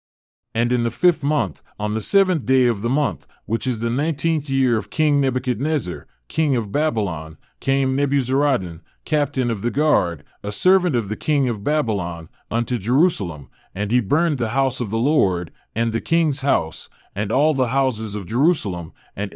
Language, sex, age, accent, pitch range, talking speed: English, male, 40-59, American, 110-140 Hz, 175 wpm